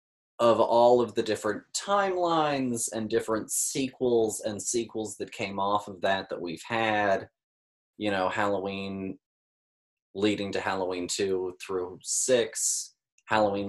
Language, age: English, 20-39